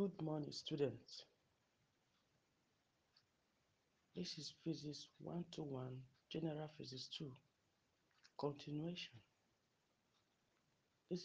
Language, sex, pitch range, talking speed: English, male, 130-160 Hz, 75 wpm